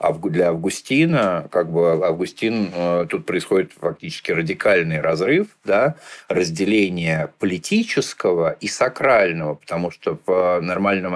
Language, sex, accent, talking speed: Russian, male, native, 90 wpm